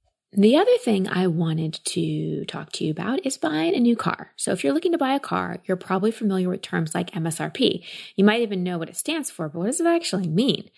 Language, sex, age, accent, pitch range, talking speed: English, female, 20-39, American, 175-230 Hz, 245 wpm